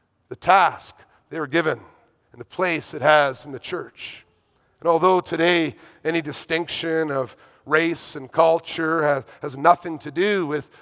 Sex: male